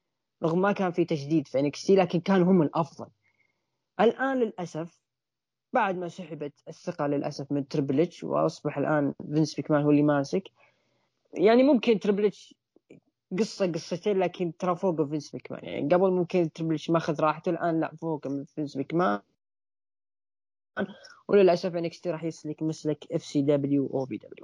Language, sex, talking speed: Arabic, female, 140 wpm